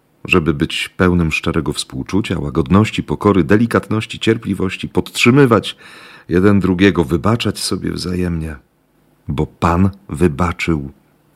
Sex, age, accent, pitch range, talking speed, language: male, 40-59, native, 80-100 Hz, 95 wpm, Polish